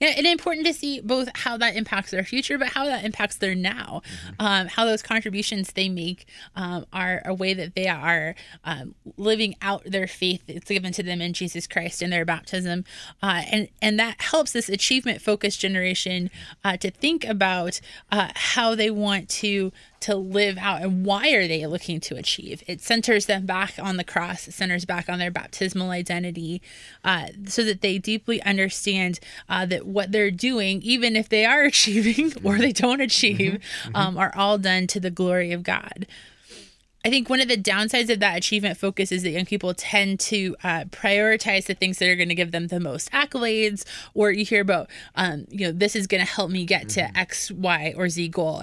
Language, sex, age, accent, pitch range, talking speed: English, female, 20-39, American, 180-215 Hz, 200 wpm